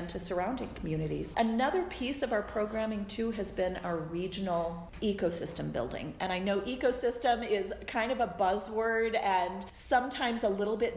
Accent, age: American, 40-59